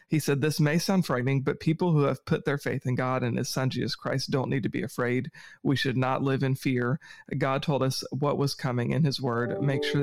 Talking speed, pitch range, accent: 250 wpm, 130-150 Hz, American